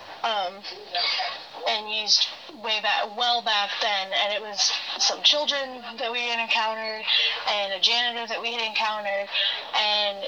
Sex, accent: female, American